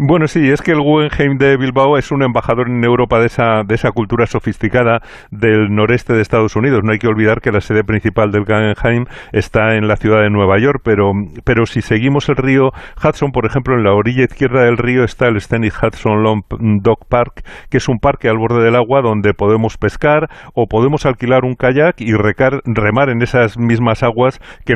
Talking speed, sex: 210 wpm, male